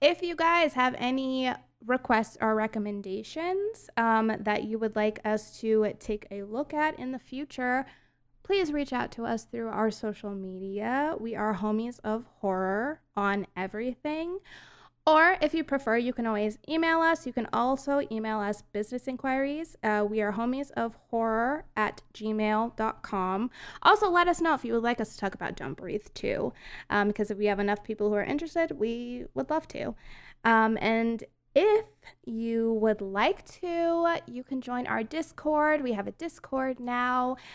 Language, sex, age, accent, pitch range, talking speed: English, female, 20-39, American, 215-270 Hz, 175 wpm